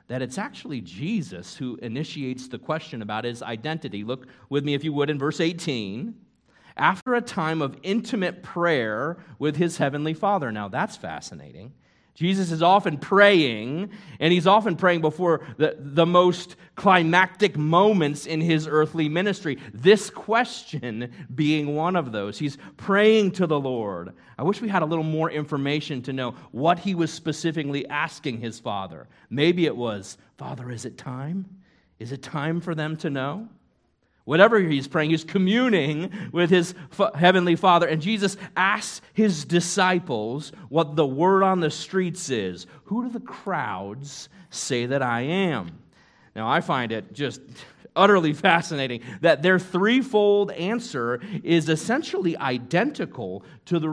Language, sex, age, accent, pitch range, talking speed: English, male, 40-59, American, 140-185 Hz, 155 wpm